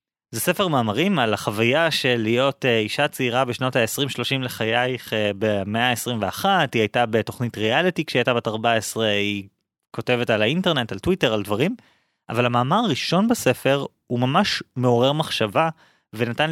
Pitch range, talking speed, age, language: 110-140 Hz, 140 wpm, 20-39, Hebrew